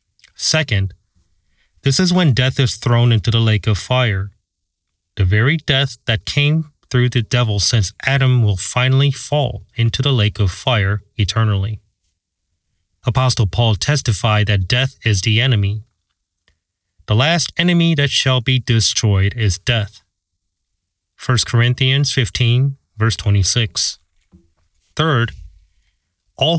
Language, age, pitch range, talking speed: English, 30-49, 100-130 Hz, 125 wpm